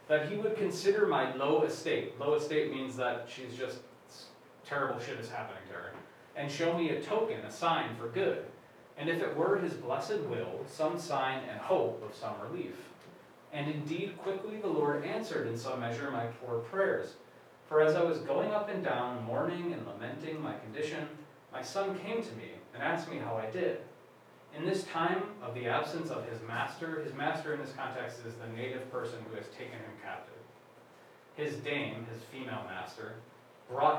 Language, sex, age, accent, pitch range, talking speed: English, male, 30-49, American, 125-165 Hz, 190 wpm